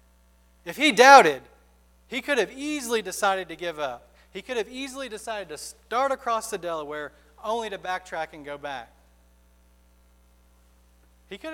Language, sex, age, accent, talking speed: English, male, 40-59, American, 150 wpm